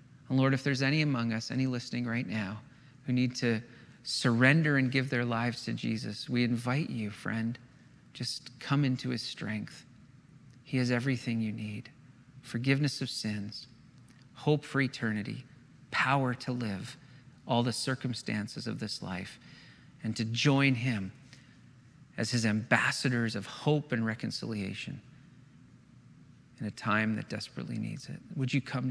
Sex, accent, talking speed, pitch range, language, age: male, American, 145 wpm, 120-135 Hz, English, 40-59